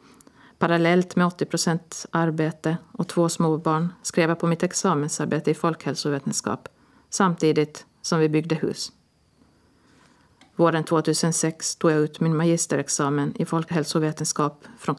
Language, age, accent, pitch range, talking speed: Swedish, 50-69, native, 155-175 Hz, 115 wpm